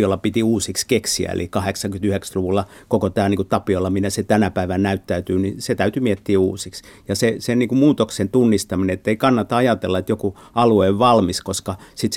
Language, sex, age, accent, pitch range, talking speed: Finnish, male, 50-69, native, 95-110 Hz, 185 wpm